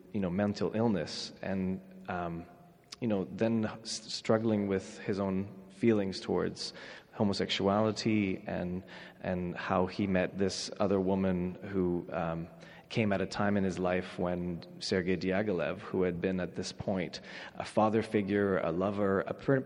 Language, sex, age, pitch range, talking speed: English, male, 30-49, 90-110 Hz, 155 wpm